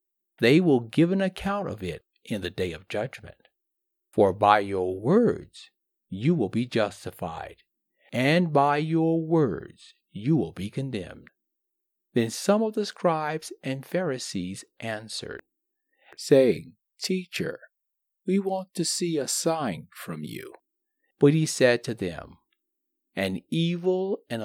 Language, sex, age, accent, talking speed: English, male, 50-69, American, 135 wpm